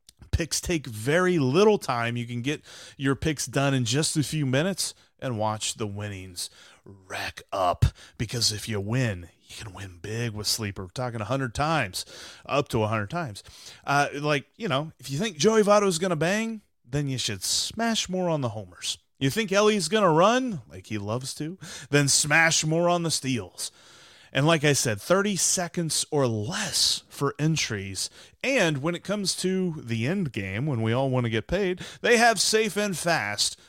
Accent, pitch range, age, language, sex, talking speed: American, 110-170 Hz, 30-49, English, male, 190 wpm